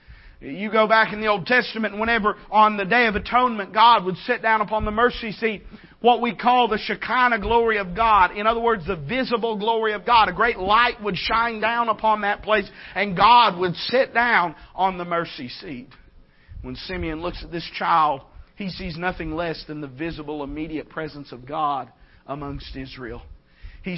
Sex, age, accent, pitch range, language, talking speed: male, 40-59, American, 150-210 Hz, English, 190 wpm